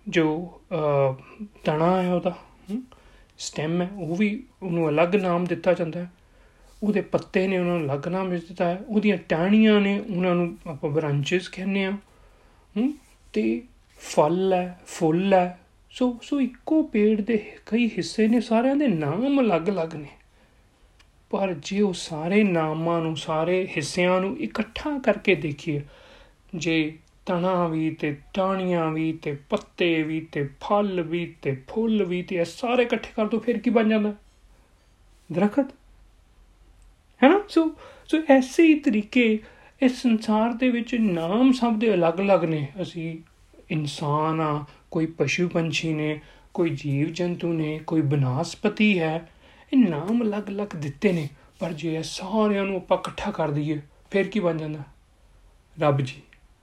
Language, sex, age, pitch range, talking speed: Punjabi, male, 30-49, 160-210 Hz, 135 wpm